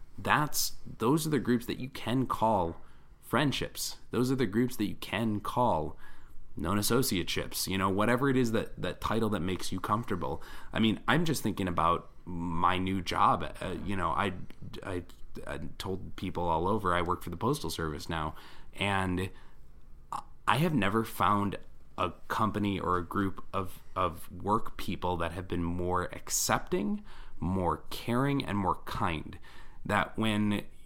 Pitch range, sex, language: 90-115 Hz, male, English